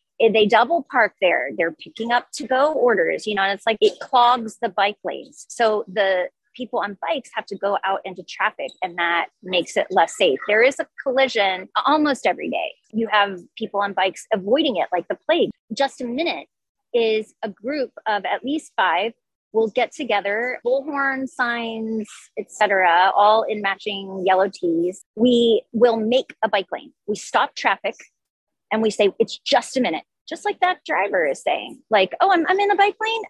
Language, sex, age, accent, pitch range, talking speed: English, female, 30-49, American, 200-280 Hz, 190 wpm